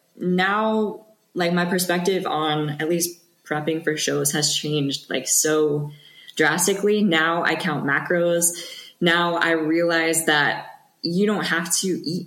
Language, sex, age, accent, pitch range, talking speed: English, female, 20-39, American, 150-180 Hz, 135 wpm